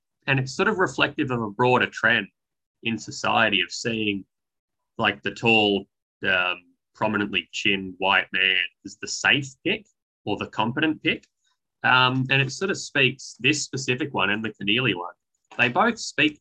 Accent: Australian